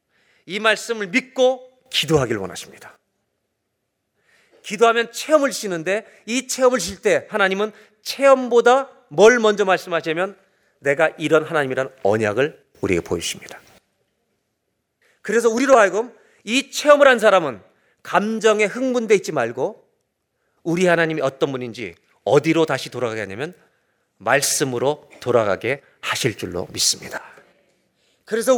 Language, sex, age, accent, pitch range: Korean, male, 40-59, native, 170-260 Hz